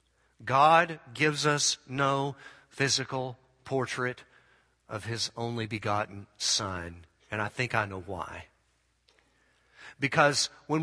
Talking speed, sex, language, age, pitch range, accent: 105 wpm, male, English, 50-69, 105-155 Hz, American